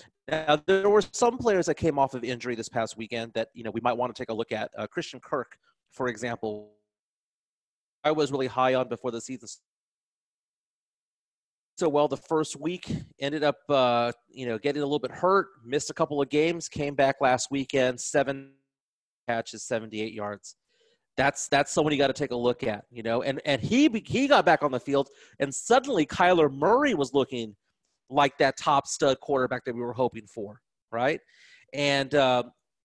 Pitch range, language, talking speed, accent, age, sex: 125-170 Hz, English, 190 wpm, American, 30-49, male